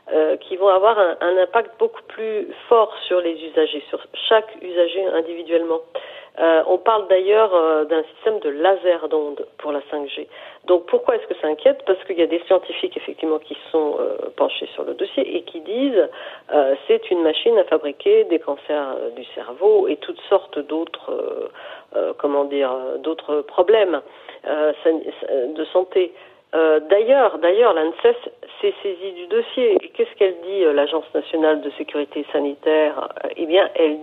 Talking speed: 160 wpm